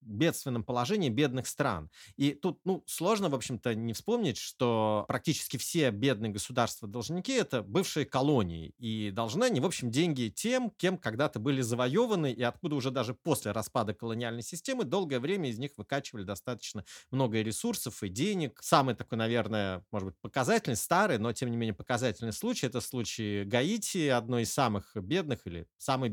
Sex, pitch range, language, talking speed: male, 115-155 Hz, Russian, 165 wpm